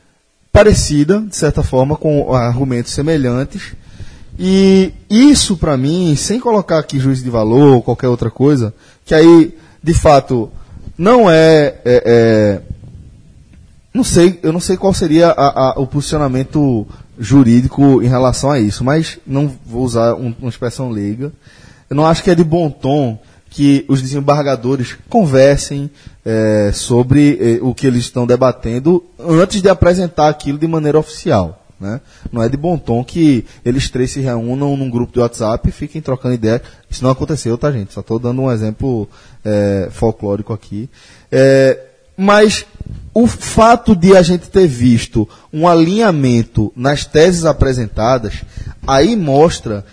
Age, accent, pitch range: 20-39, Brazilian, 115-155 Hz